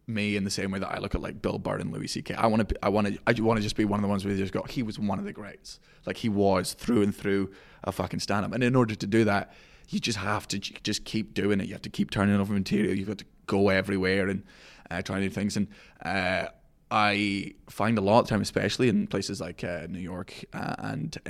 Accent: British